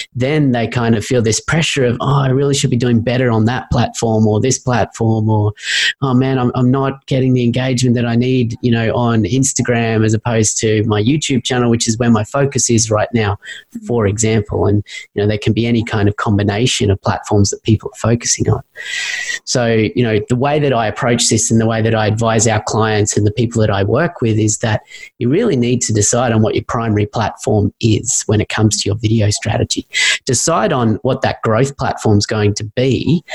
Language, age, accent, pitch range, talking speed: English, 30-49, Australian, 110-125 Hz, 225 wpm